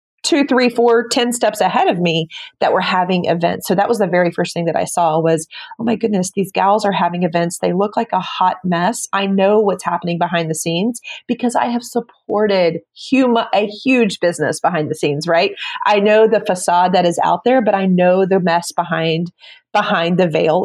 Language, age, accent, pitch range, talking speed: English, 30-49, American, 170-220 Hz, 210 wpm